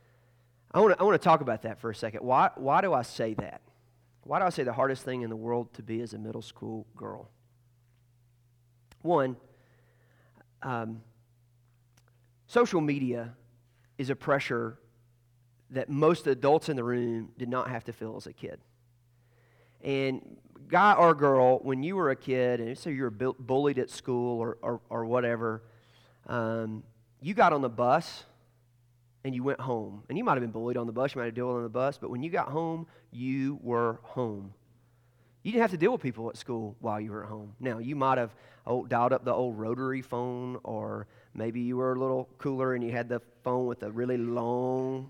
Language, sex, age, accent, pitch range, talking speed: English, male, 30-49, American, 120-130 Hz, 200 wpm